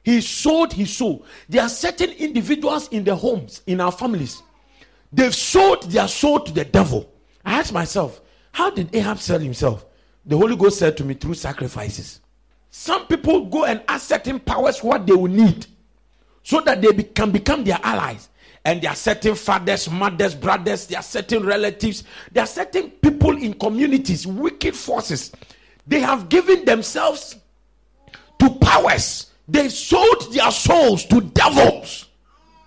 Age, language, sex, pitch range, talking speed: 50-69, English, male, 165-265 Hz, 160 wpm